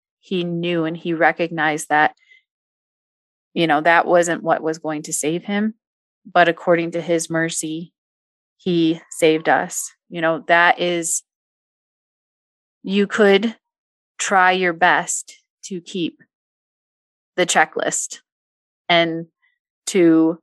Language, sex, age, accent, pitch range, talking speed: English, female, 30-49, American, 160-185 Hz, 115 wpm